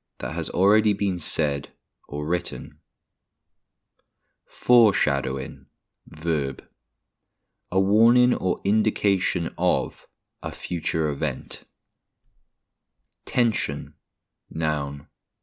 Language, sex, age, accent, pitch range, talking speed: English, male, 20-39, British, 75-105 Hz, 75 wpm